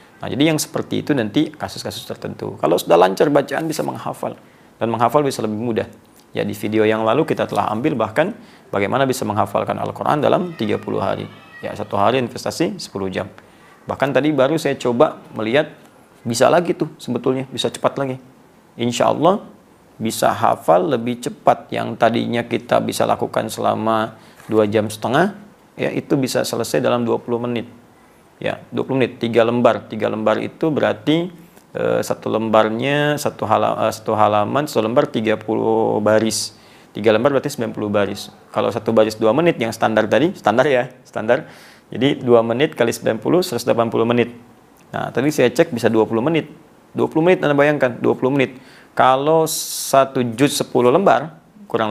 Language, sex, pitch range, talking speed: English, male, 110-145 Hz, 155 wpm